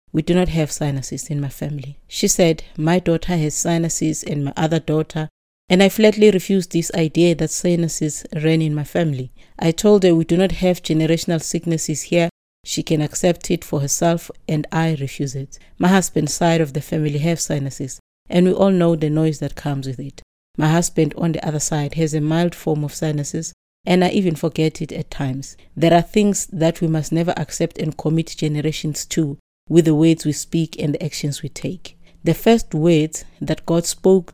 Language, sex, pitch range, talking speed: English, female, 150-175 Hz, 200 wpm